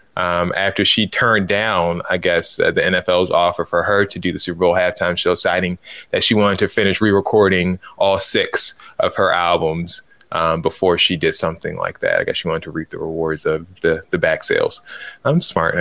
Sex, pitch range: male, 95-110 Hz